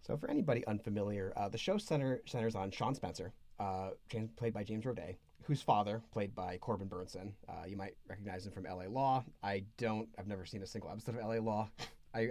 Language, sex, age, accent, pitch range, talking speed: English, male, 30-49, American, 95-125 Hz, 210 wpm